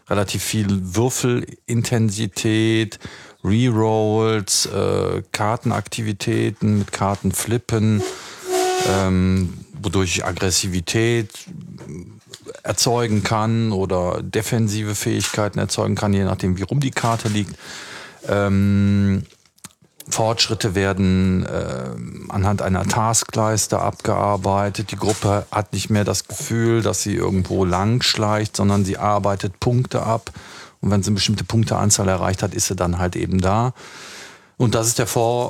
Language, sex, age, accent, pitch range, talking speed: German, male, 40-59, German, 95-115 Hz, 120 wpm